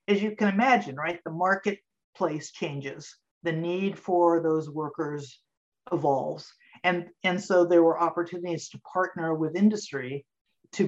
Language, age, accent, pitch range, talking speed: English, 50-69, American, 150-180 Hz, 140 wpm